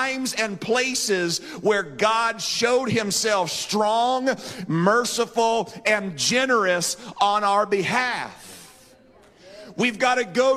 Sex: male